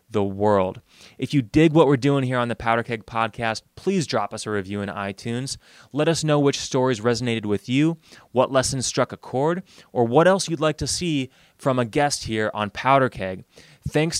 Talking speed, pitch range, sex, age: 205 wpm, 110-135 Hz, male, 20-39